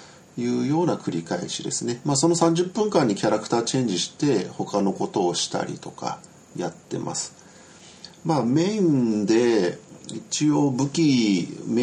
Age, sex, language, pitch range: 40-59, male, Japanese, 105-150 Hz